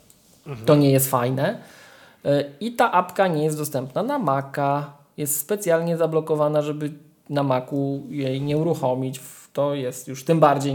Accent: native